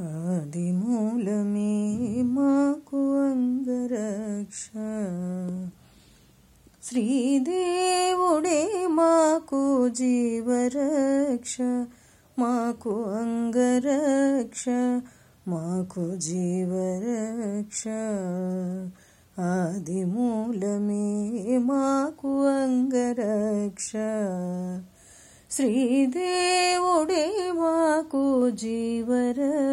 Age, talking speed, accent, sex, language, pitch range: 20-39, 45 wpm, native, female, Telugu, 185-255 Hz